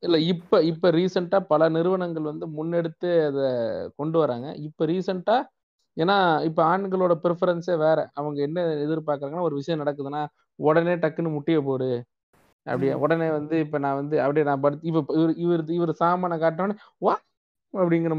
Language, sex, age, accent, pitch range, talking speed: Tamil, male, 20-39, native, 150-185 Hz, 150 wpm